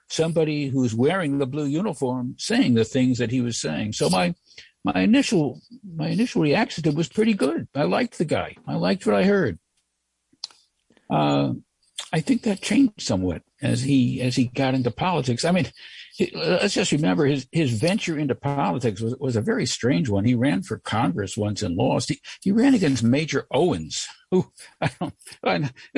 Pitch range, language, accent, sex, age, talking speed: 125-170 Hz, English, American, male, 60-79, 175 wpm